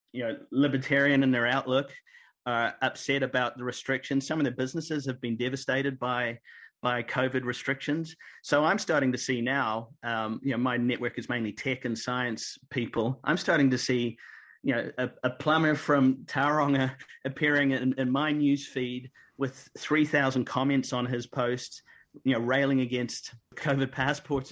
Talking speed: 165 wpm